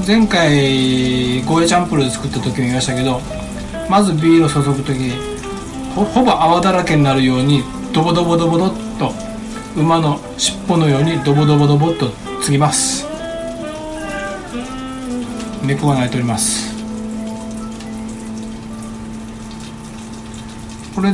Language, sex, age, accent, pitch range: Japanese, male, 60-79, native, 115-160 Hz